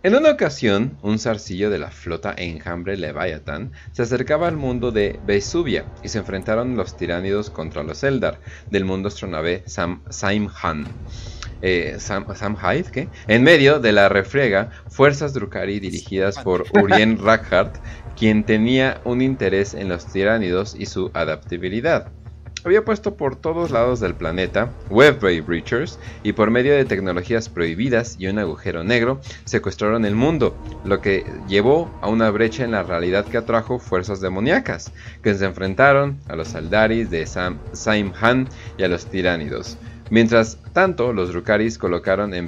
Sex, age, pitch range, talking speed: male, 30-49, 90-115 Hz, 150 wpm